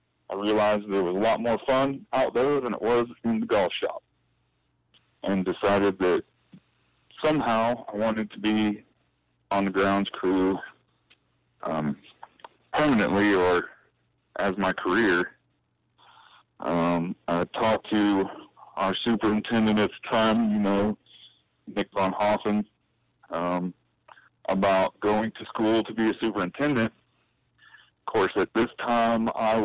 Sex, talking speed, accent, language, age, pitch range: male, 125 wpm, American, English, 40-59, 100-120 Hz